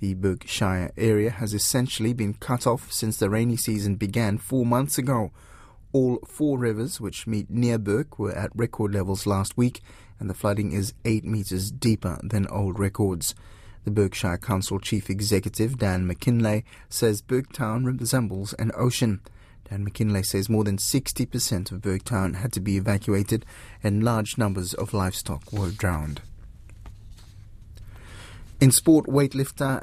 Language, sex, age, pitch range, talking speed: English, male, 30-49, 100-120 Hz, 150 wpm